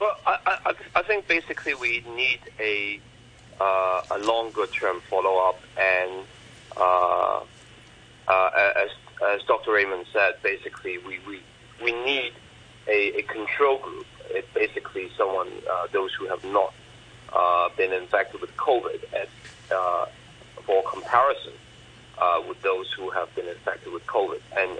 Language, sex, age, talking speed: English, male, 40-59, 145 wpm